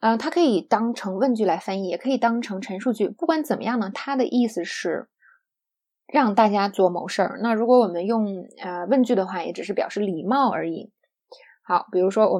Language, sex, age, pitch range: Chinese, female, 20-39, 195-275 Hz